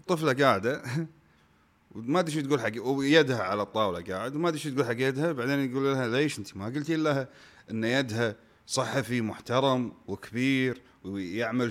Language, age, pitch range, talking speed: Arabic, 30-49, 115-165 Hz, 160 wpm